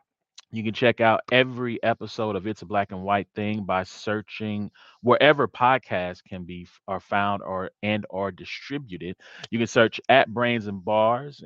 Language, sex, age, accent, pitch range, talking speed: English, male, 30-49, American, 95-120 Hz, 170 wpm